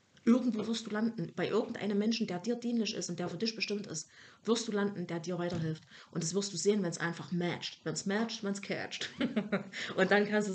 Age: 30-49